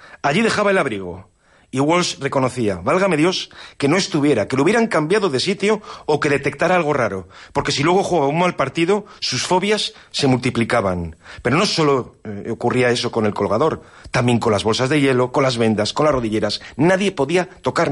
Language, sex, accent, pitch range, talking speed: Spanish, male, Spanish, 120-185 Hz, 195 wpm